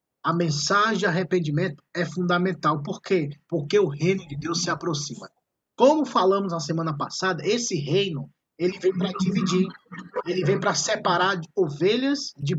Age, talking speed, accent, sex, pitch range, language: 20-39, 155 wpm, Brazilian, male, 165-205 Hz, Portuguese